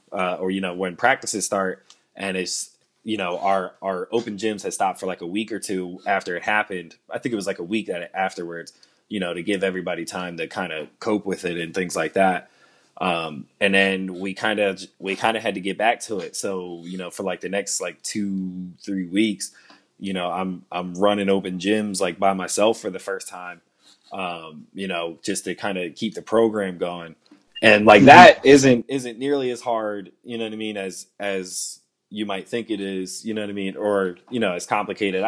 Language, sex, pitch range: English, male, 95-110 Hz